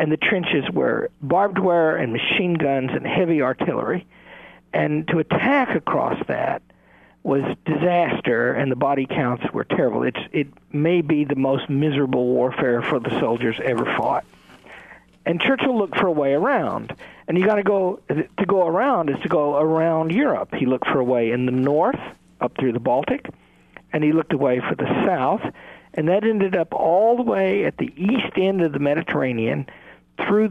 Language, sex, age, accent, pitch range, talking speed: English, male, 50-69, American, 130-190 Hz, 180 wpm